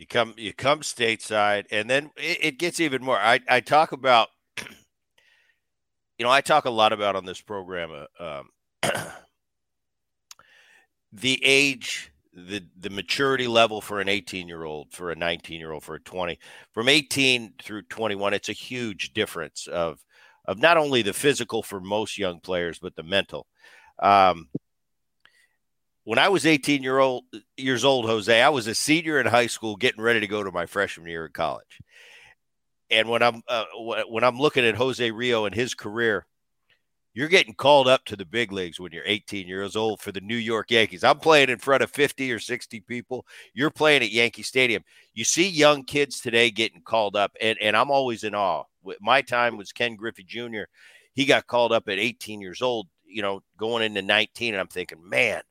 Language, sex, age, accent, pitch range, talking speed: English, male, 50-69, American, 105-130 Hz, 190 wpm